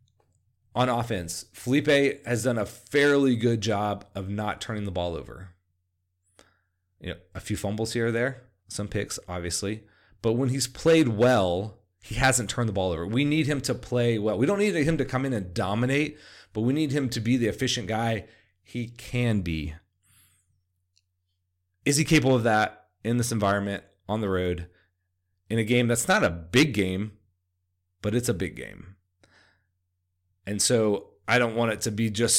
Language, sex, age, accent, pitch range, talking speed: English, male, 30-49, American, 95-125 Hz, 180 wpm